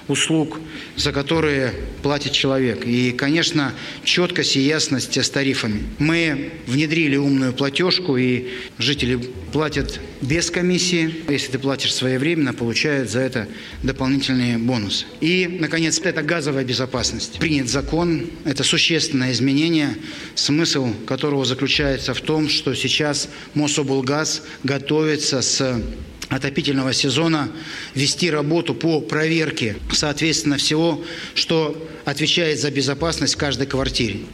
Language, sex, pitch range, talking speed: Russian, male, 135-155 Hz, 115 wpm